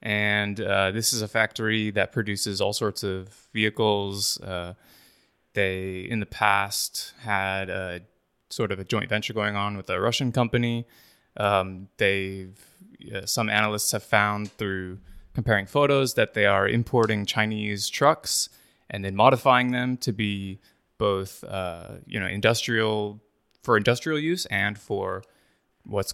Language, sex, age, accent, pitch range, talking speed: English, male, 20-39, American, 100-115 Hz, 145 wpm